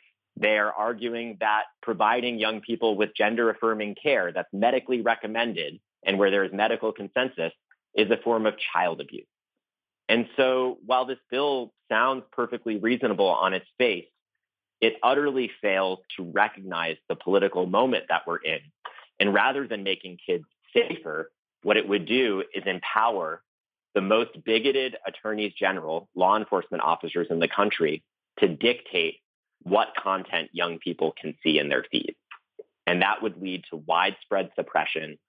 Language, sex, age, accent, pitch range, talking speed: English, male, 30-49, American, 100-130 Hz, 150 wpm